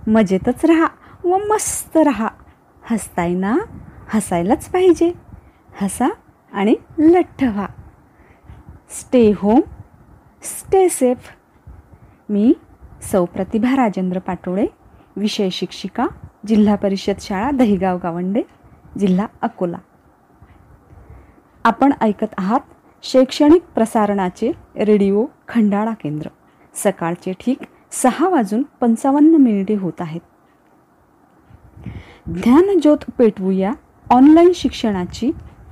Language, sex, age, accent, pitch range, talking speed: Marathi, female, 30-49, native, 200-290 Hz, 85 wpm